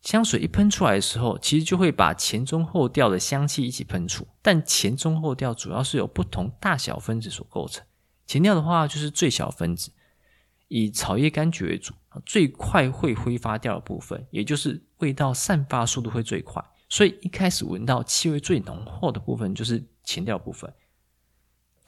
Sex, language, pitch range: male, Chinese, 110-160 Hz